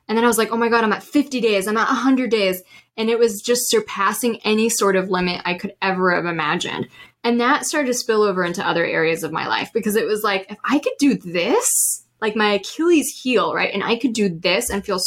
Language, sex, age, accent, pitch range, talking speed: English, female, 10-29, American, 180-225 Hz, 250 wpm